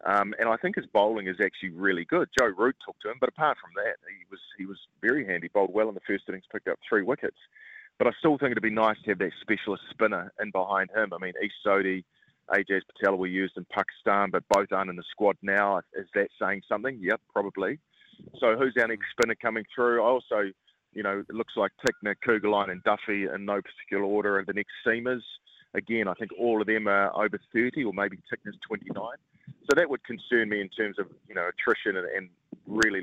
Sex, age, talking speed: male, 30-49, 230 wpm